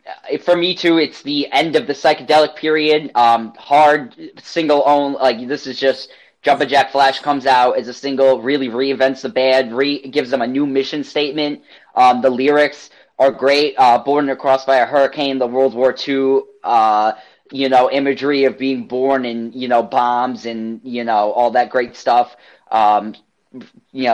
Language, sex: English, male